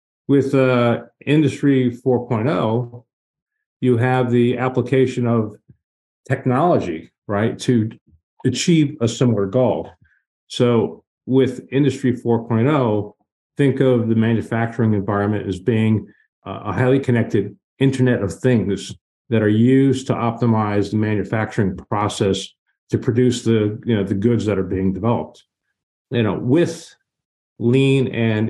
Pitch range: 100-125 Hz